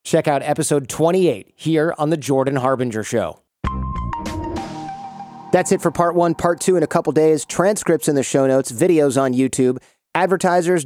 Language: English